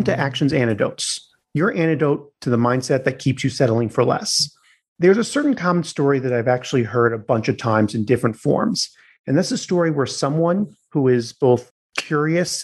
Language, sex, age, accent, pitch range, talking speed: English, male, 30-49, American, 125-155 Hz, 190 wpm